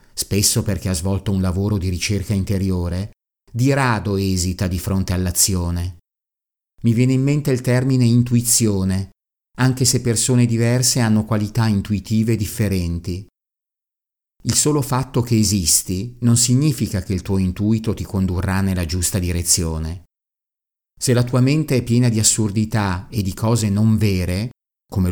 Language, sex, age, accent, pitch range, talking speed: Italian, male, 50-69, native, 95-120 Hz, 145 wpm